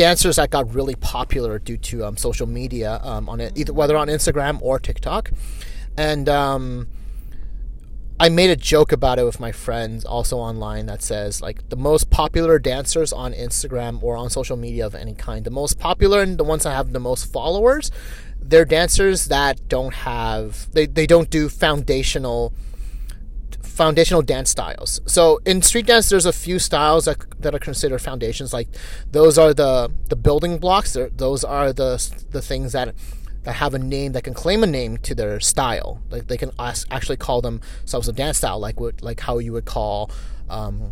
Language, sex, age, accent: English, male, 30-49, American